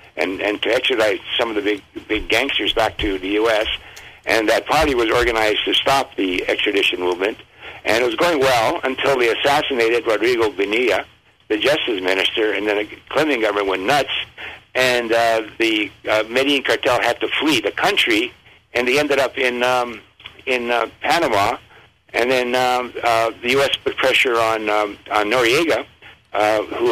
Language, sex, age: English, male, 60-79